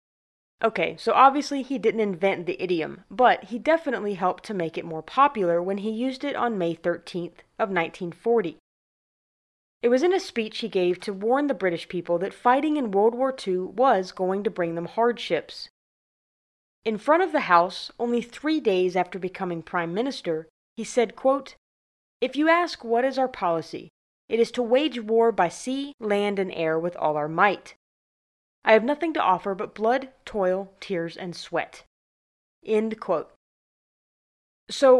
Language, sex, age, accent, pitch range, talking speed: English, female, 30-49, American, 180-265 Hz, 170 wpm